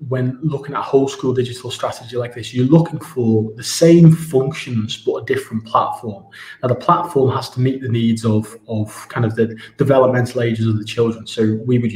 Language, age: English, 20-39